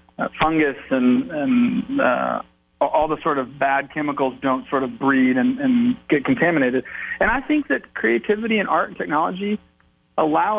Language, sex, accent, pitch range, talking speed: English, male, American, 130-200 Hz, 165 wpm